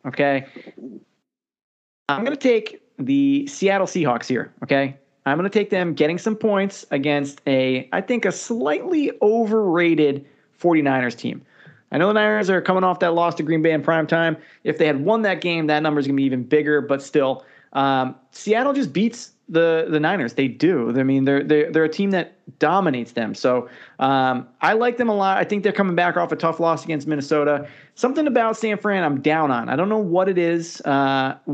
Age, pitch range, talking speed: 30-49, 145-195 Hz, 205 wpm